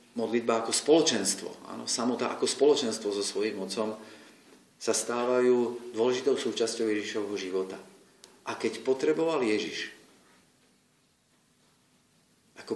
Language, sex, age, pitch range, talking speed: Slovak, male, 40-59, 100-155 Hz, 100 wpm